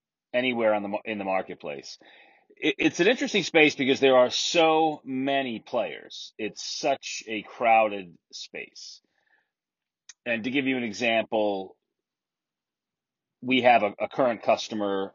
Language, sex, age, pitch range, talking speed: English, male, 30-49, 100-130 Hz, 135 wpm